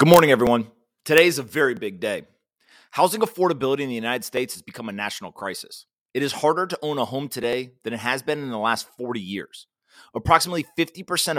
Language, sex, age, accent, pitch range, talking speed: English, male, 30-49, American, 120-150 Hz, 205 wpm